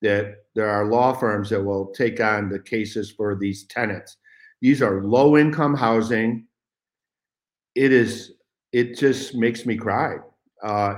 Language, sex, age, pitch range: English, male, 50-69, 100-125 Hz